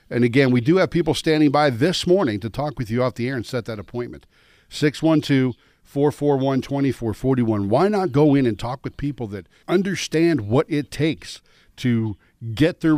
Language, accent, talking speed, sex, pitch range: English, American, 175 wpm, male, 115-155 Hz